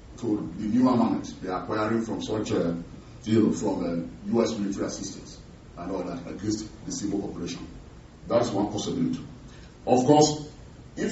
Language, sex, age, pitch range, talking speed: English, male, 40-59, 100-125 Hz, 155 wpm